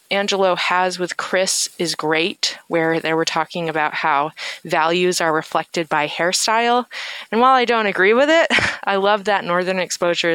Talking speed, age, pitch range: 170 wpm, 20-39, 170-230 Hz